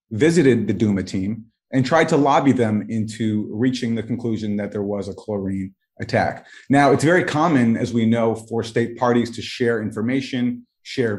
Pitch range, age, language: 110-130 Hz, 30-49, English